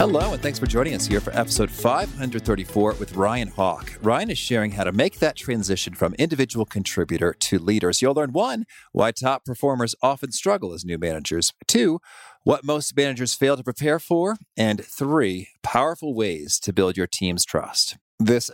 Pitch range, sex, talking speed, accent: 100-145 Hz, male, 180 wpm, American